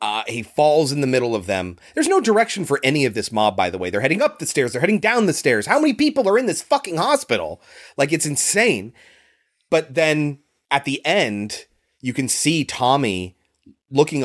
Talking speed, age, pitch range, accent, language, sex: 210 wpm, 30-49, 105-160 Hz, American, English, male